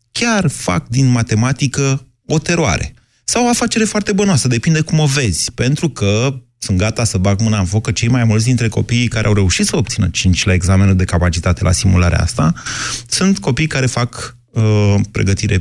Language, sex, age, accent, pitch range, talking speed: Romanian, male, 30-49, native, 100-125 Hz, 185 wpm